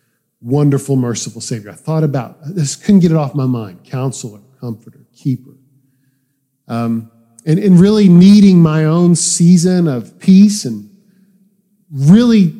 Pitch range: 135-175 Hz